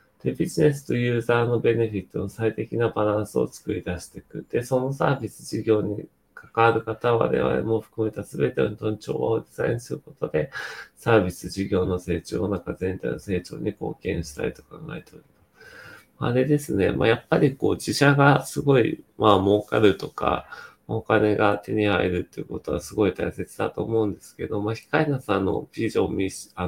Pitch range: 100-130 Hz